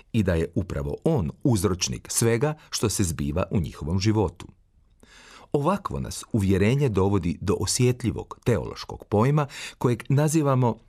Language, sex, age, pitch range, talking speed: Croatian, male, 40-59, 95-135 Hz, 125 wpm